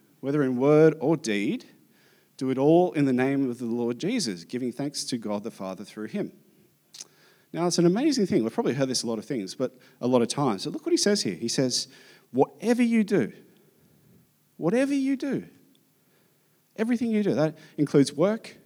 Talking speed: 195 wpm